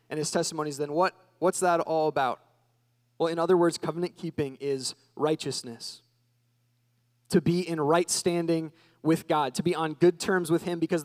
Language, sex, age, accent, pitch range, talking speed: English, male, 20-39, American, 135-180 Hz, 165 wpm